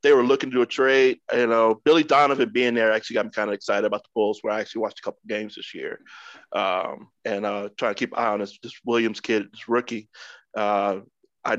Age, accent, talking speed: 20-39, American, 250 wpm